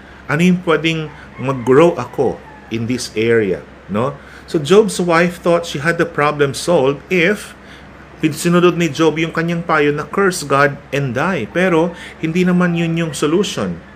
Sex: male